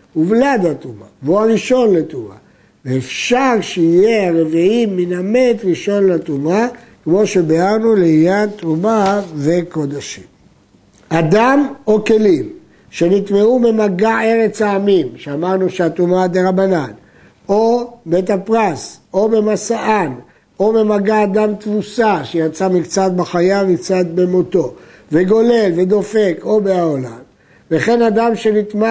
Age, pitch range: 60-79, 170-220 Hz